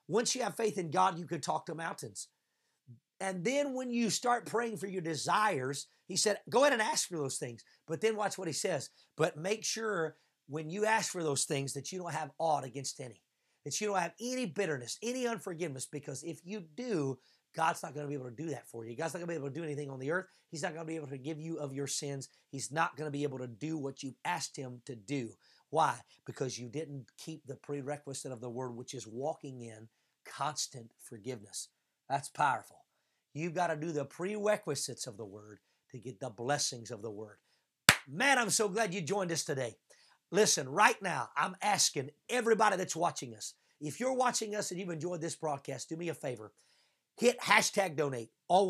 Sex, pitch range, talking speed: male, 140-195 Hz, 220 wpm